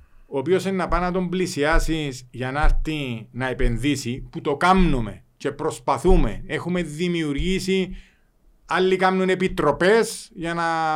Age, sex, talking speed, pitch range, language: 40-59, male, 135 wpm, 140-185 Hz, Greek